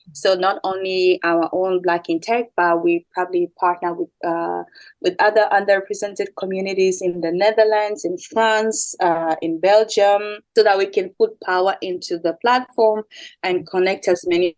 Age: 20-39